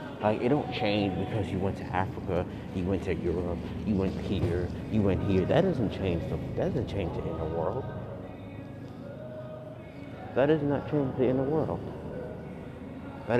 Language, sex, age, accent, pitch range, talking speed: English, male, 30-49, American, 95-140 Hz, 160 wpm